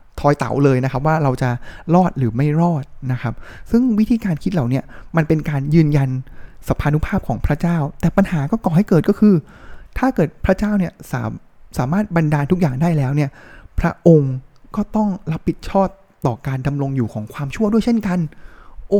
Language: Thai